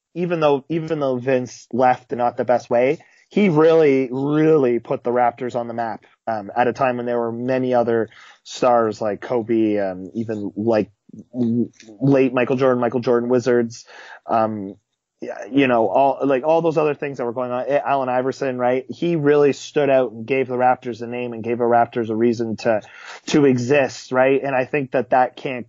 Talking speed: 195 wpm